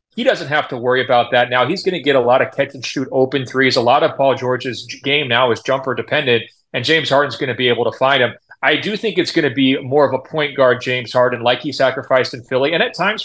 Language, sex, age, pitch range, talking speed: English, male, 30-49, 130-175 Hz, 265 wpm